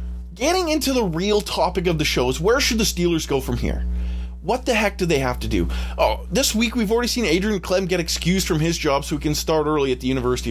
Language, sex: English, male